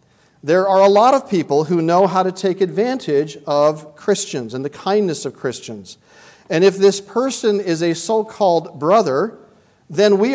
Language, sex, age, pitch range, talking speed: English, male, 40-59, 155-210 Hz, 170 wpm